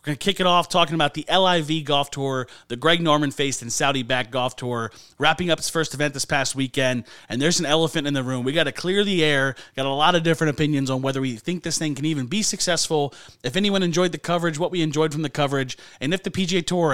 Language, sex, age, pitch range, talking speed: English, male, 30-49, 135-175 Hz, 260 wpm